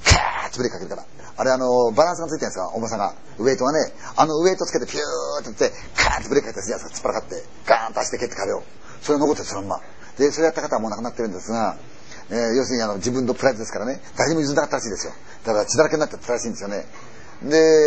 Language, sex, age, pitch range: Chinese, male, 40-59, 115-160 Hz